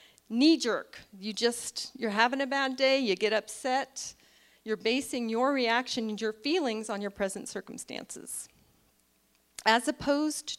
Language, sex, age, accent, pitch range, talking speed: English, female, 40-59, American, 195-250 Hz, 130 wpm